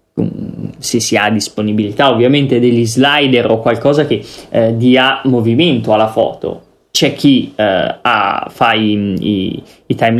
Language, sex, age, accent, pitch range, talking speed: Italian, male, 20-39, native, 115-140 Hz, 140 wpm